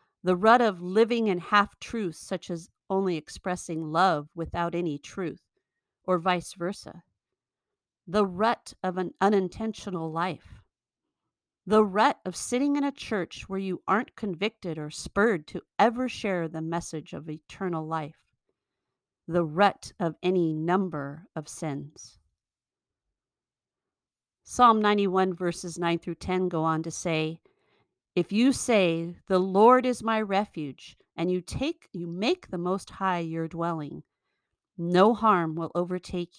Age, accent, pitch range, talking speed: 50-69, American, 165-205 Hz, 135 wpm